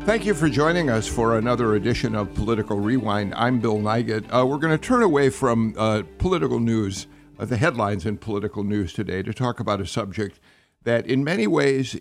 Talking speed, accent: 200 wpm, American